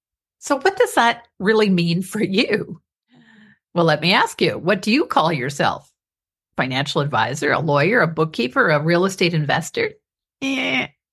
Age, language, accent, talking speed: 50-69, English, American, 155 wpm